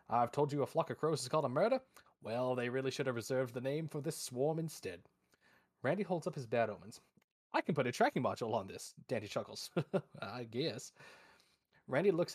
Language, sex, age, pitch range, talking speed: English, male, 20-39, 110-150 Hz, 210 wpm